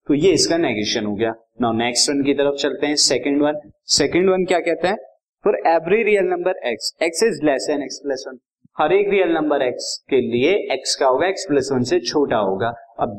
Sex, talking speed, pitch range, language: male, 185 wpm, 125-180 Hz, Hindi